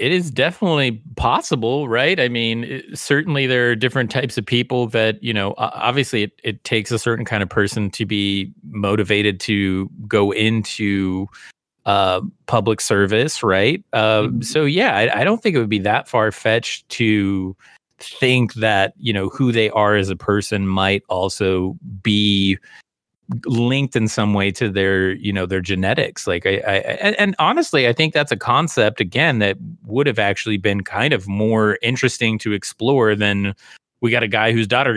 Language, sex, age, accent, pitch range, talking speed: English, male, 30-49, American, 100-125 Hz, 175 wpm